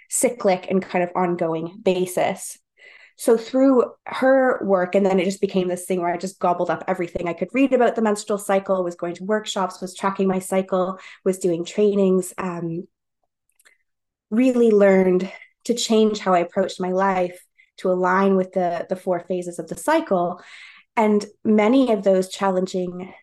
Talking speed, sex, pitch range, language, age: 170 wpm, female, 180-210 Hz, English, 20-39